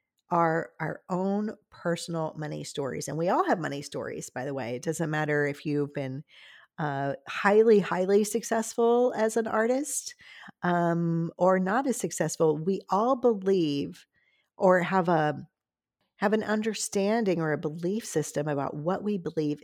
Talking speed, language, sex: 155 wpm, English, female